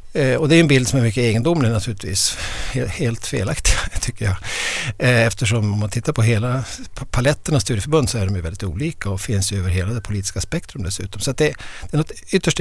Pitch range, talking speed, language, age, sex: 100-140 Hz, 200 wpm, Swedish, 60-79, male